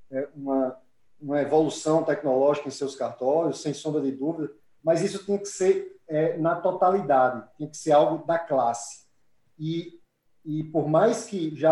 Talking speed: 160 wpm